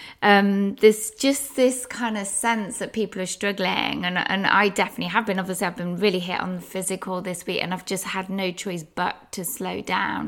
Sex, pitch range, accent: female, 190-215 Hz, British